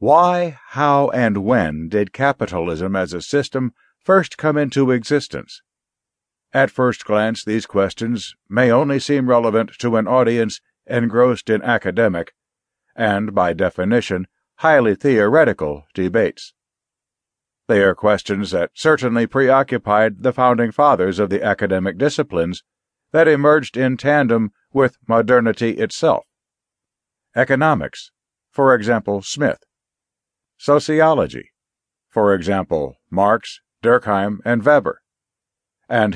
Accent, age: American, 60-79